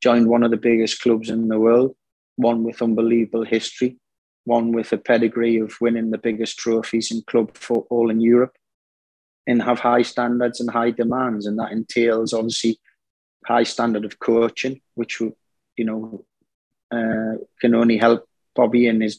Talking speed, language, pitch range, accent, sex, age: 165 wpm, English, 110-120 Hz, British, male, 30-49